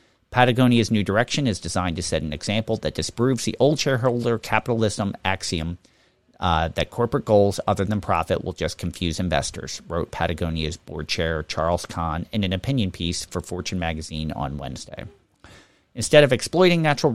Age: 40-59